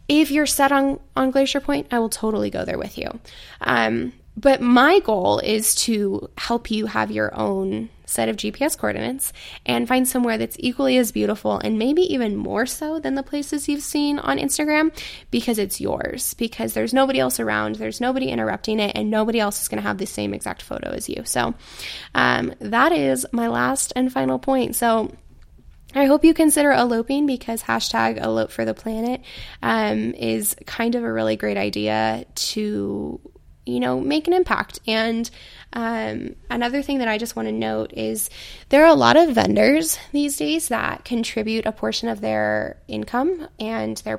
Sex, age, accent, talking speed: female, 10-29, American, 185 wpm